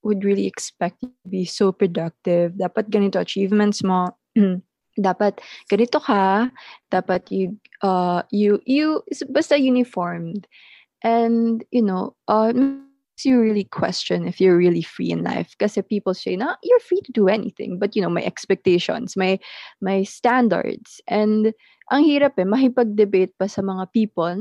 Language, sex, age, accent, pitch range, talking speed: English, female, 20-39, Filipino, 185-220 Hz, 150 wpm